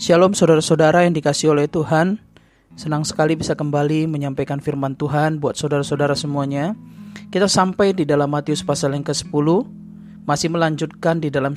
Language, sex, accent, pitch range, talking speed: Indonesian, male, native, 150-195 Hz, 145 wpm